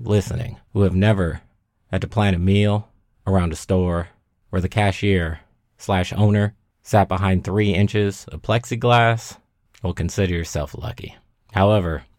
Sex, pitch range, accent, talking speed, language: male, 90-110 Hz, American, 140 wpm, English